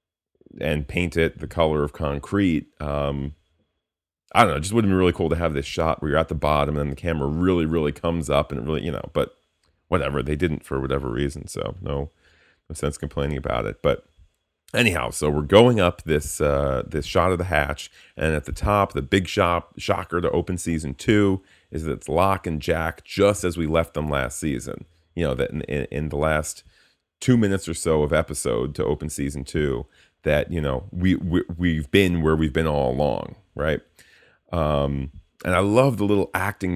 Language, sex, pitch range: English, male, 75-90 Hz